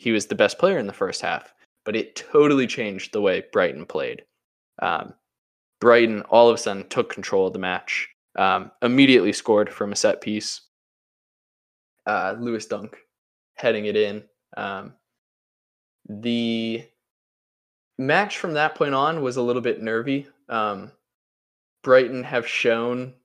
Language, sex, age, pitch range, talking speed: English, male, 10-29, 110-155 Hz, 145 wpm